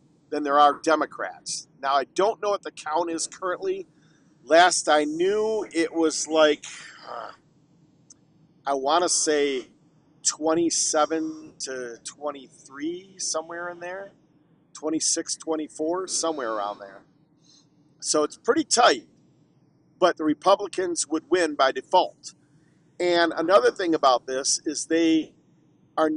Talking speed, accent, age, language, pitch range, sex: 125 wpm, American, 50-69, English, 150-175 Hz, male